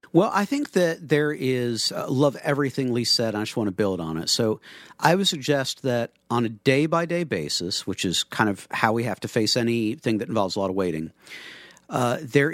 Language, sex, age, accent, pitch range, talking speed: English, male, 50-69, American, 115-160 Hz, 215 wpm